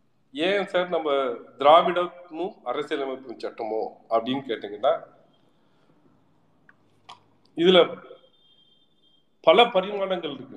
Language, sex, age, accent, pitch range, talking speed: Tamil, male, 40-59, native, 150-215 Hz, 70 wpm